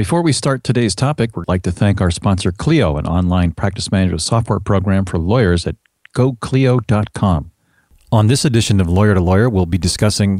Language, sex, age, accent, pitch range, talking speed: English, male, 50-69, American, 95-125 Hz, 185 wpm